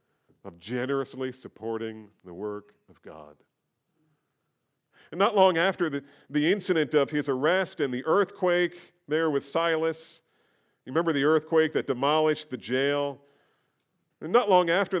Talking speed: 140 wpm